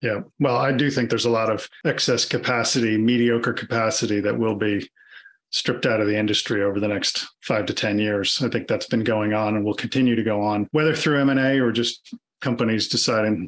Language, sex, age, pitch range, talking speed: English, male, 40-59, 115-135 Hz, 210 wpm